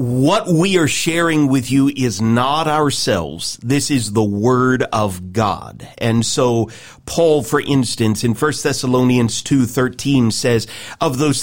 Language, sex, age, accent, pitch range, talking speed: English, male, 40-59, American, 130-175 Hz, 135 wpm